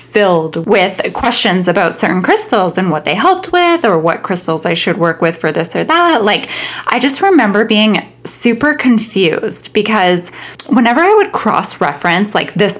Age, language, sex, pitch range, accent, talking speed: 20-39, English, female, 175-265 Hz, American, 170 wpm